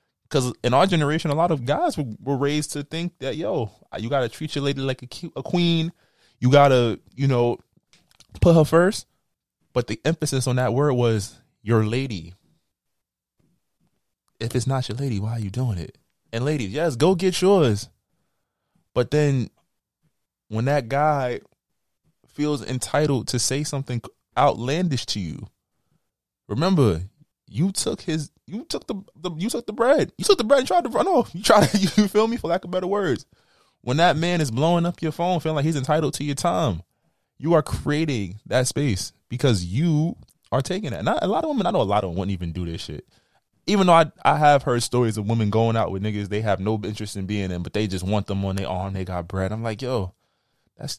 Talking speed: 210 wpm